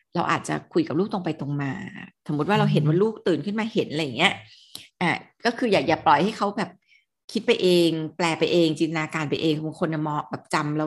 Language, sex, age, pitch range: Thai, female, 20-39, 155-195 Hz